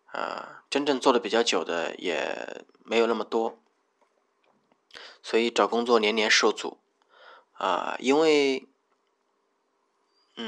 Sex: male